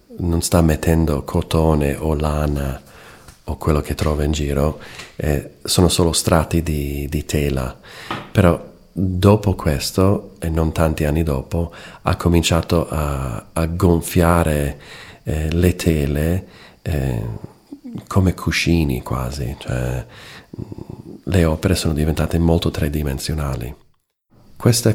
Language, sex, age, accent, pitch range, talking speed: Italian, male, 40-59, native, 75-85 Hz, 115 wpm